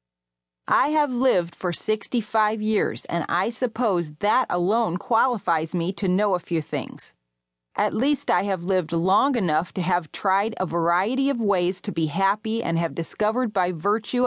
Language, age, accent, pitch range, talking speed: English, 30-49, American, 155-220 Hz, 170 wpm